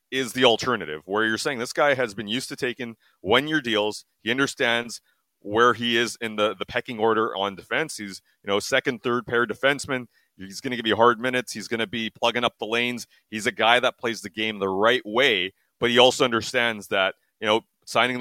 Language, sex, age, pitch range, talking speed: English, male, 30-49, 100-120 Hz, 220 wpm